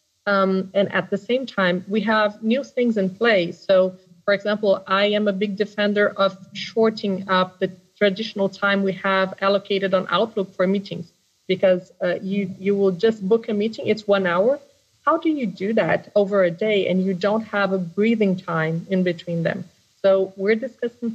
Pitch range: 180-205 Hz